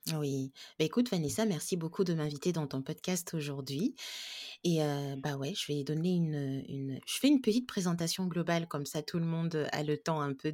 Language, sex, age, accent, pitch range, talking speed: French, female, 30-49, French, 150-185 Hz, 210 wpm